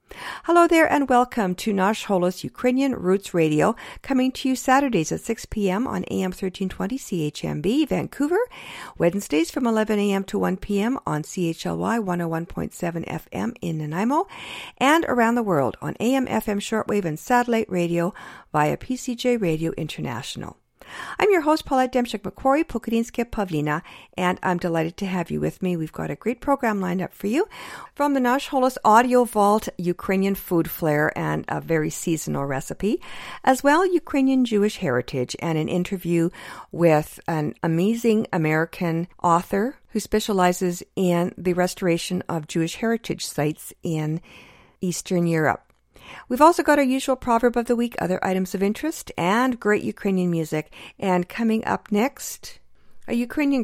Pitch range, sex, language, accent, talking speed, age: 165-240 Hz, female, English, American, 145 wpm, 50-69